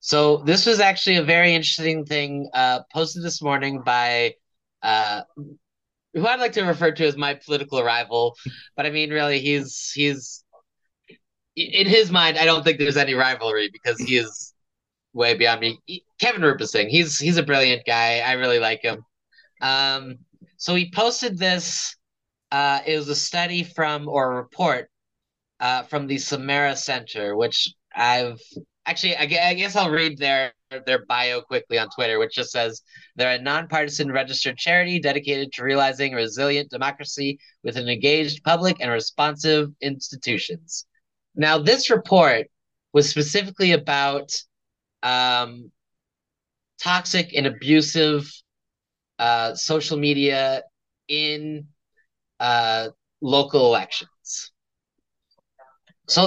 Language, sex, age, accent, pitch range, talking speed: English, male, 30-49, American, 130-165 Hz, 135 wpm